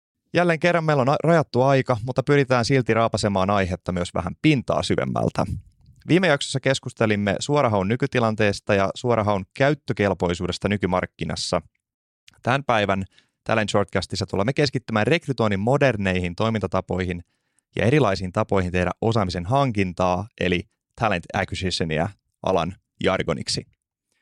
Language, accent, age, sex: Finnish, native, 30-49, male